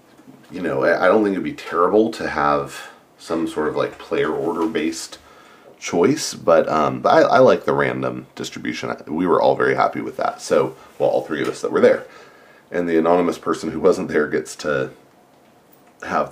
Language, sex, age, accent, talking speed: English, male, 30-49, American, 195 wpm